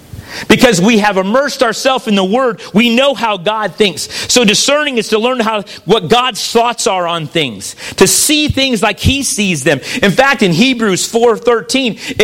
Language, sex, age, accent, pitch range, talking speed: English, male, 40-59, American, 195-250 Hz, 180 wpm